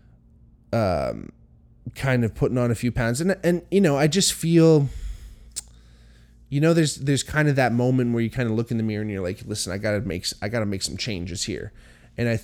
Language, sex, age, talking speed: English, male, 20-39, 230 wpm